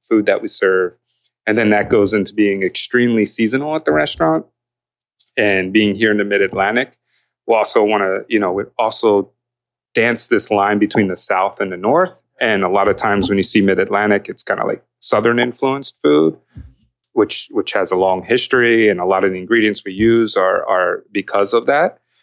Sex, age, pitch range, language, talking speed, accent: male, 30-49, 95-115 Hz, English, 195 wpm, American